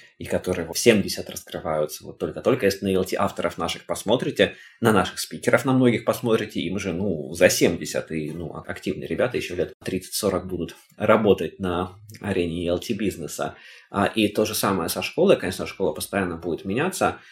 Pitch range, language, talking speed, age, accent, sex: 90-115 Hz, Russian, 165 wpm, 20-39, native, male